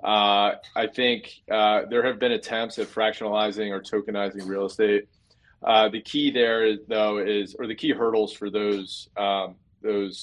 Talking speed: 165 wpm